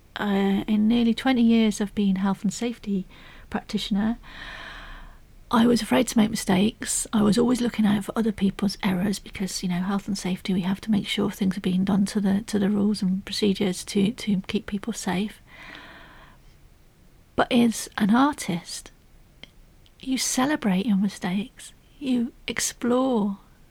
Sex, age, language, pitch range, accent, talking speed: female, 40-59, English, 195-230 Hz, British, 160 wpm